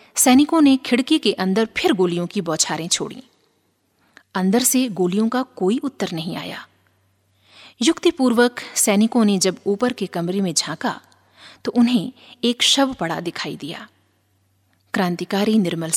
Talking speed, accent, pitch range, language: 135 wpm, native, 175-255 Hz, Hindi